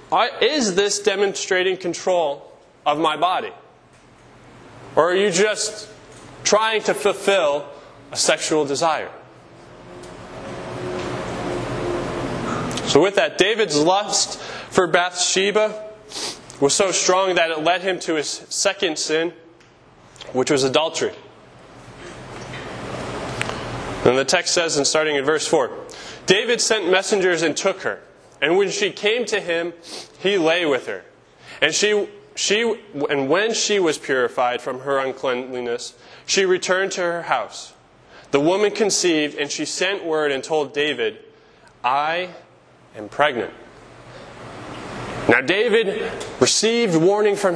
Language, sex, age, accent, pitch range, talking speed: English, male, 20-39, American, 155-215 Hz, 120 wpm